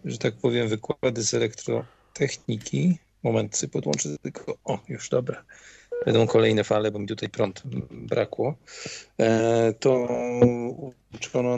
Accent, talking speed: native, 115 wpm